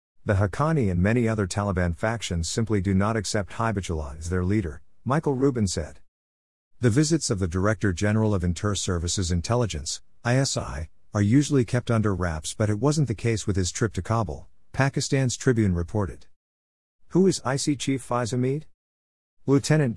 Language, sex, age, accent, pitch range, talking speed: English, male, 50-69, American, 90-115 Hz, 160 wpm